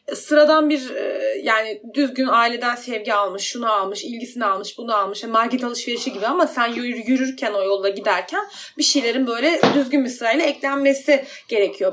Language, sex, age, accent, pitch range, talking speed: Turkish, female, 30-49, native, 235-315 Hz, 155 wpm